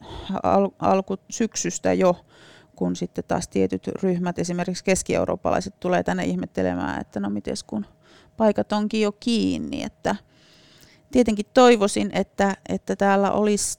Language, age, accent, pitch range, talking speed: Finnish, 30-49, native, 155-205 Hz, 125 wpm